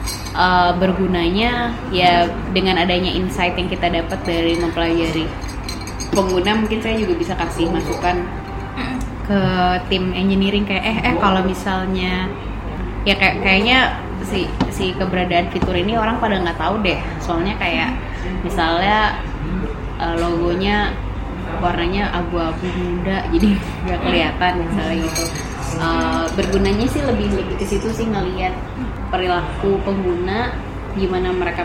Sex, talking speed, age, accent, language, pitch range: female, 125 wpm, 20-39, native, Indonesian, 170-195 Hz